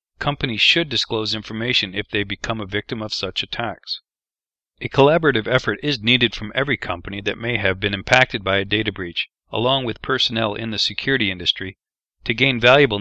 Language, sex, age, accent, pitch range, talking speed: English, male, 40-59, American, 105-125 Hz, 180 wpm